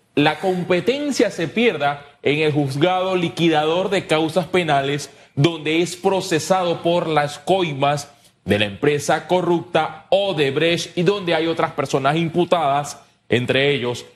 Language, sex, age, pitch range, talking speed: Spanish, male, 30-49, 135-175 Hz, 125 wpm